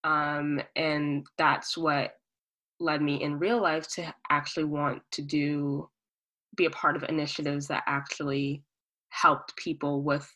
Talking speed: 140 wpm